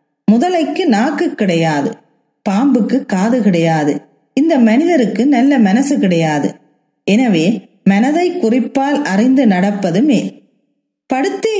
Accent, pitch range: native, 210-270 Hz